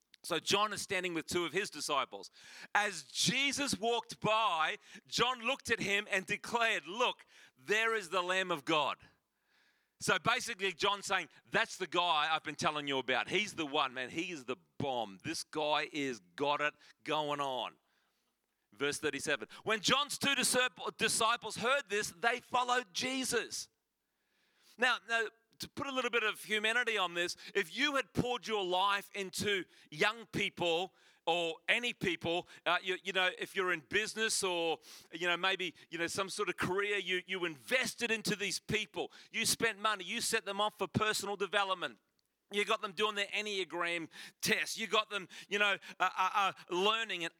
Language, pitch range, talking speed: English, 175-220 Hz, 175 wpm